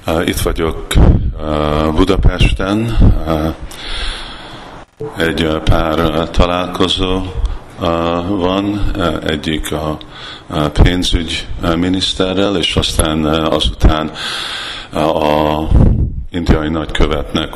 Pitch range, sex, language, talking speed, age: 75-90 Hz, male, Hungarian, 55 wpm, 50-69